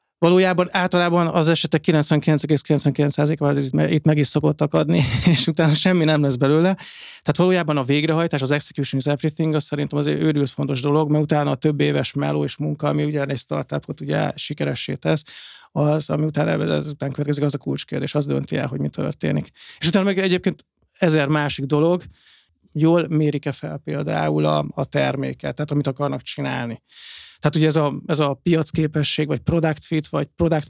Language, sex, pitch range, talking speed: Hungarian, male, 145-160 Hz, 175 wpm